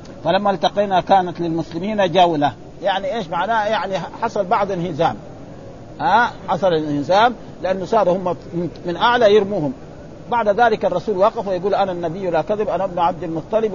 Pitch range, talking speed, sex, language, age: 165-205 Hz, 150 wpm, male, Arabic, 50-69